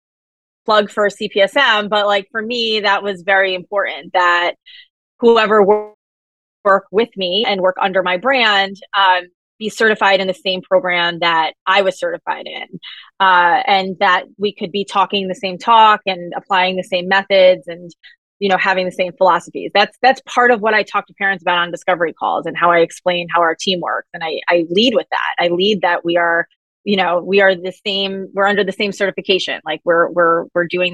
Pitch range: 175-205 Hz